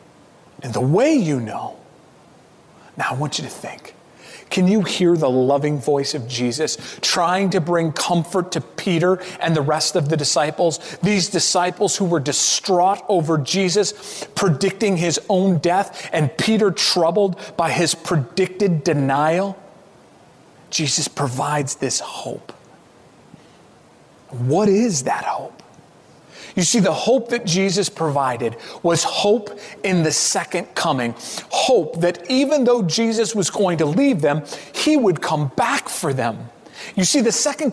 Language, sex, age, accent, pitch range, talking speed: English, male, 30-49, American, 160-210 Hz, 145 wpm